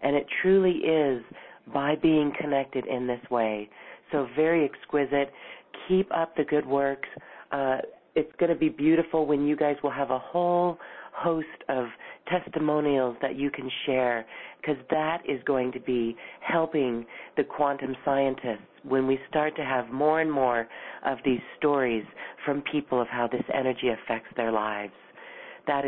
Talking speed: 160 wpm